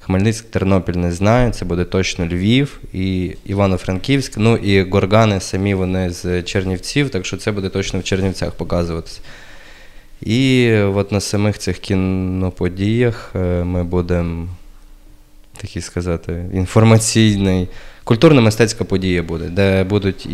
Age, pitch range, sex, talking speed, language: 20-39, 90-105 Hz, male, 120 wpm, Ukrainian